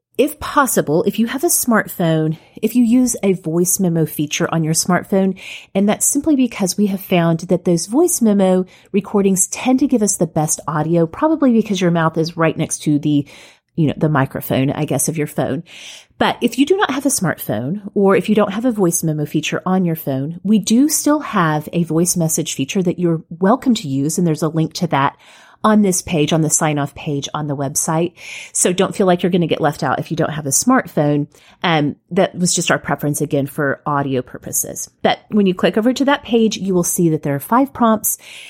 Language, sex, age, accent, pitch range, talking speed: English, female, 30-49, American, 160-215 Hz, 230 wpm